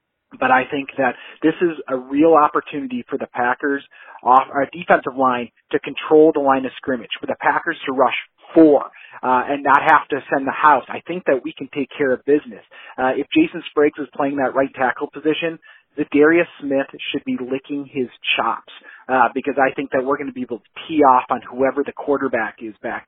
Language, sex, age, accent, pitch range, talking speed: English, male, 30-49, American, 130-155 Hz, 215 wpm